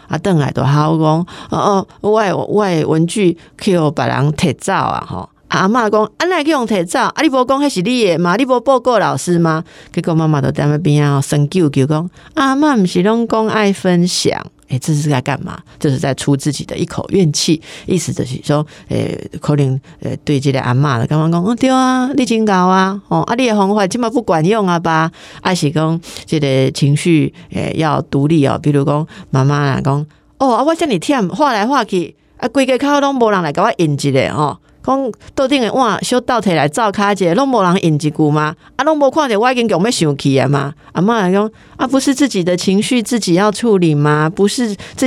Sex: female